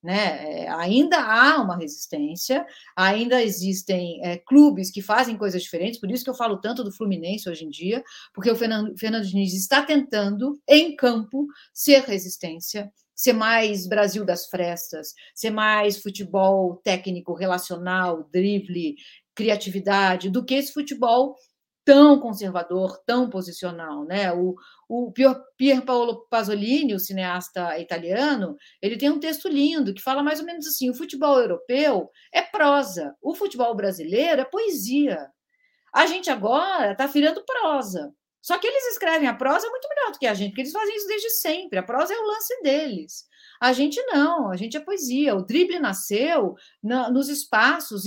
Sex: female